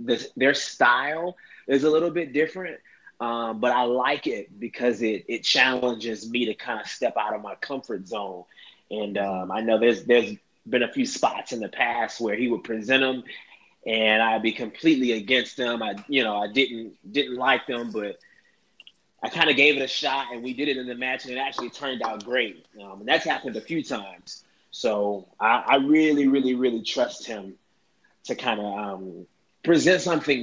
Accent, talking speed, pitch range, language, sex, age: American, 200 wpm, 110-135 Hz, English, male, 20-39